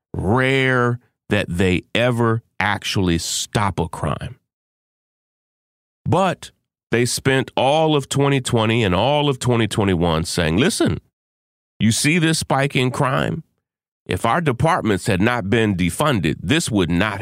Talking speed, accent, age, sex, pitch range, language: 125 wpm, American, 40-59, male, 95-140 Hz, English